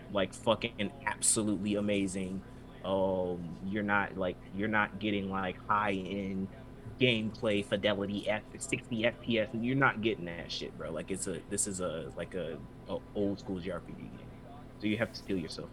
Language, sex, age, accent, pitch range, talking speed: English, male, 20-39, American, 100-125 Hz, 170 wpm